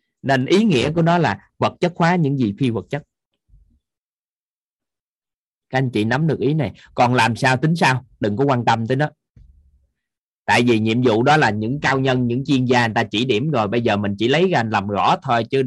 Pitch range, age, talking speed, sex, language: 115-150 Hz, 20-39, 225 wpm, male, Vietnamese